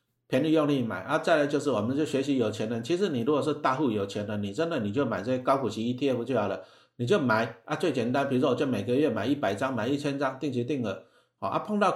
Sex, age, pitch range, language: male, 50-69, 115-145 Hz, Chinese